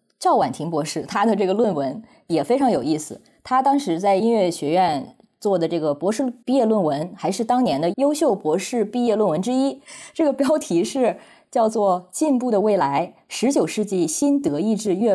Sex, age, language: female, 20-39, Chinese